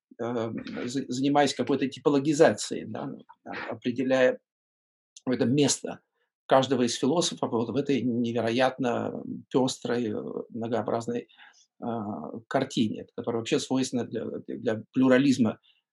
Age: 50-69